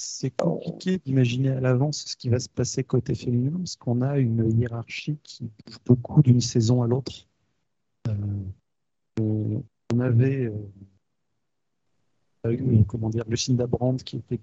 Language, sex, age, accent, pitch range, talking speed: French, male, 40-59, French, 115-140 Hz, 145 wpm